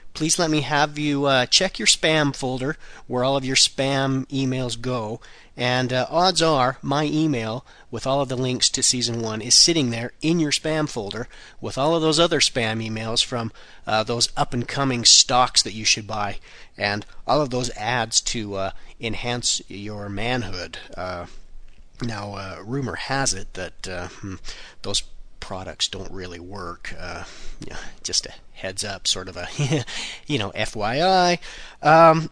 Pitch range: 110-150 Hz